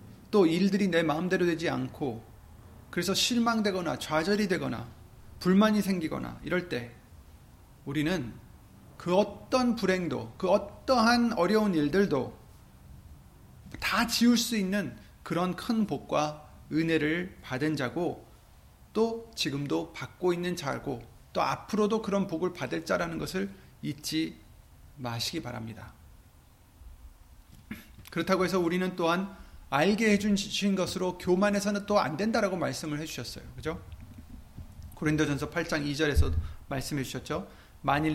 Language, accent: Korean, native